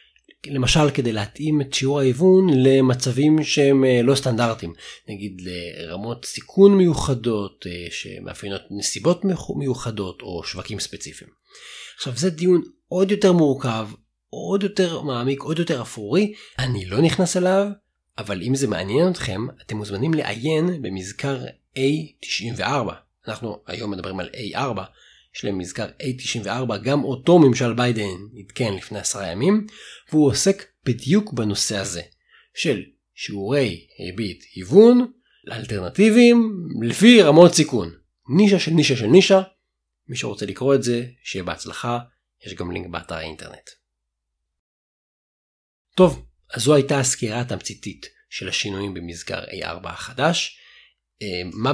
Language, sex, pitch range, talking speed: Hebrew, male, 100-155 Hz, 120 wpm